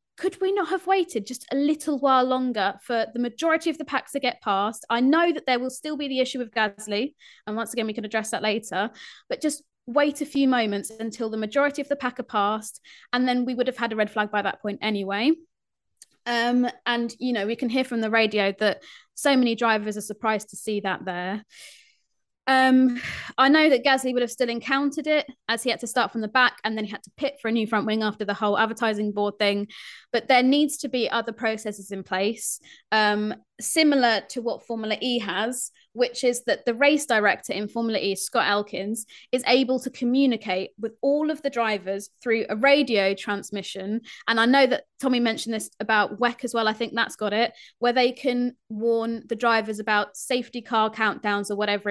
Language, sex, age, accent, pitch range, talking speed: English, female, 20-39, British, 210-260 Hz, 215 wpm